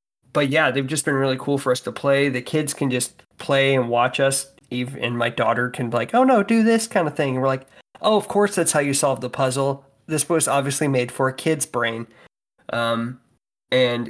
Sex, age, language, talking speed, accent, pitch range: male, 20-39, English, 225 wpm, American, 120-140 Hz